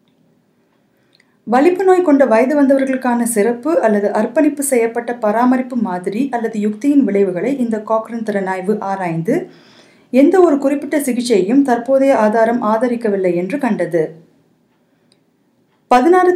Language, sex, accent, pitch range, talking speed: Tamil, female, native, 215-275 Hz, 105 wpm